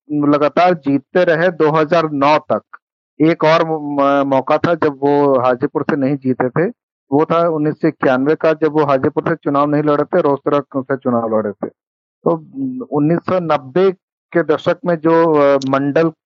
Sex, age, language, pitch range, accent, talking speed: male, 50-69, Hindi, 135-160 Hz, native, 150 wpm